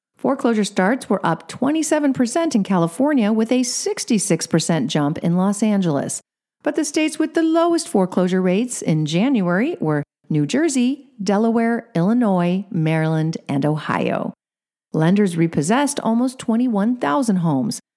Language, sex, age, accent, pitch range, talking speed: English, female, 50-69, American, 165-255 Hz, 125 wpm